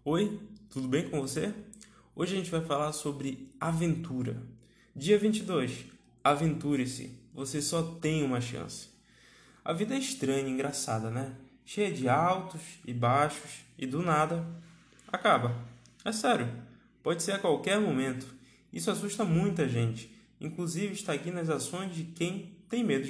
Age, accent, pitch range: 20-39, Brazilian, 130-185 Hz